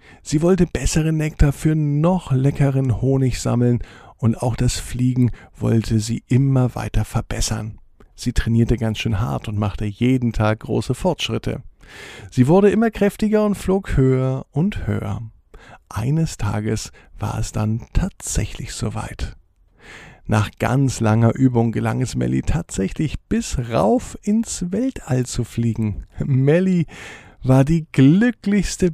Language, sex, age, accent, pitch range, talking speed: German, male, 50-69, German, 110-145 Hz, 130 wpm